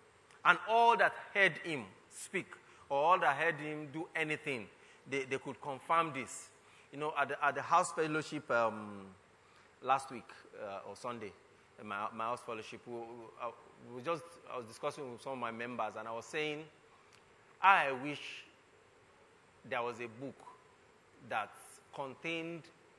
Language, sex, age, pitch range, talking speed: English, male, 30-49, 115-150 Hz, 155 wpm